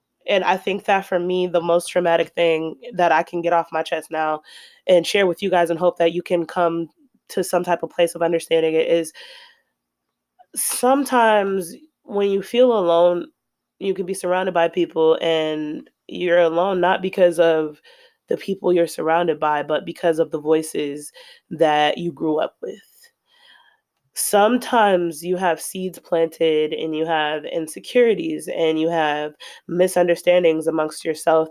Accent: American